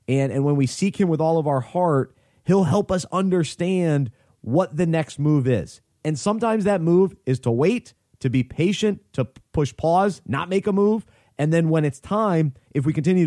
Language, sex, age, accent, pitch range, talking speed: English, male, 30-49, American, 125-160 Hz, 205 wpm